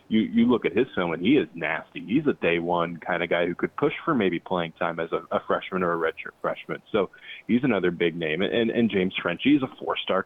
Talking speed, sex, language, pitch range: 265 wpm, male, English, 90-115 Hz